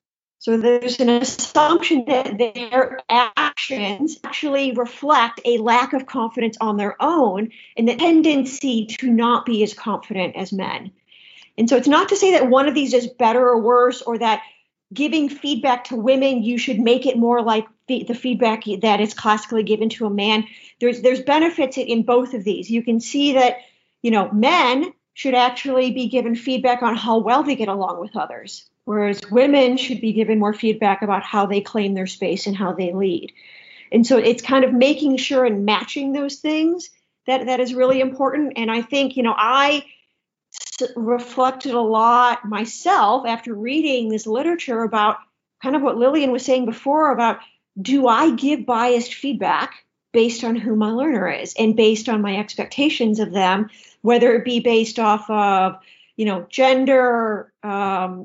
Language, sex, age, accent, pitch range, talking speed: English, female, 40-59, American, 220-265 Hz, 180 wpm